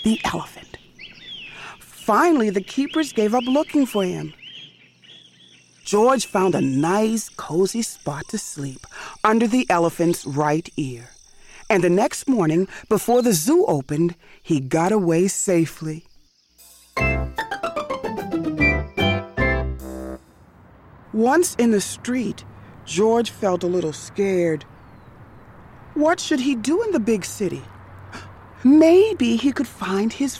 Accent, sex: American, female